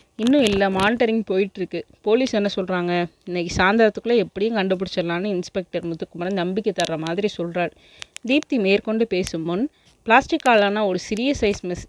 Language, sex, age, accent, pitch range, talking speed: Tamil, female, 20-39, native, 175-215 Hz, 130 wpm